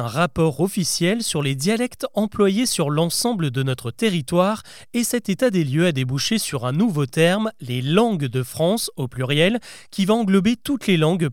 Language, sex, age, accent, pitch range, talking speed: French, male, 30-49, French, 145-205 Hz, 185 wpm